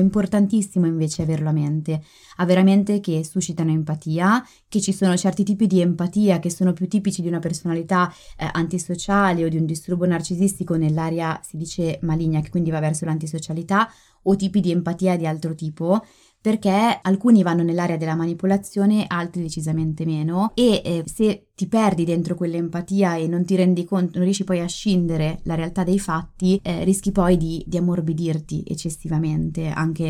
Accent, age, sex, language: native, 20-39, female, Italian